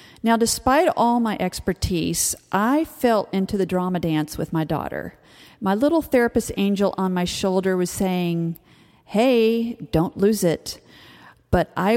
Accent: American